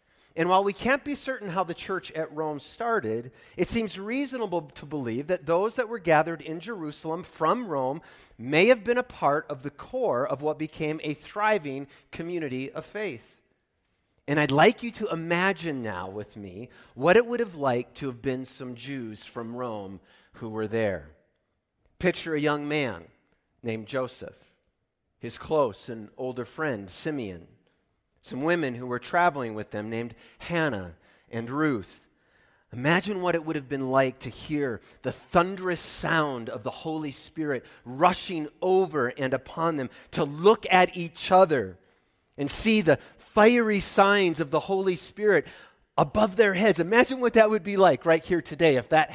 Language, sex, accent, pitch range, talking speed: English, male, American, 125-190 Hz, 170 wpm